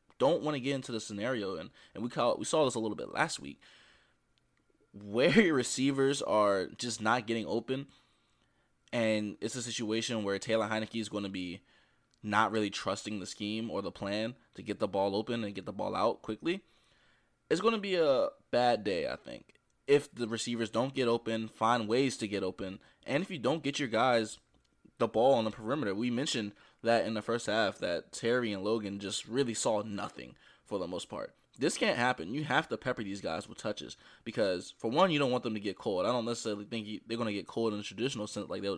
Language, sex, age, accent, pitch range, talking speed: English, male, 20-39, American, 105-120 Hz, 220 wpm